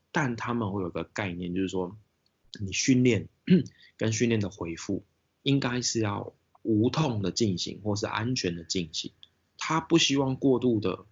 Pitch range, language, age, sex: 90-115 Hz, Chinese, 20-39, male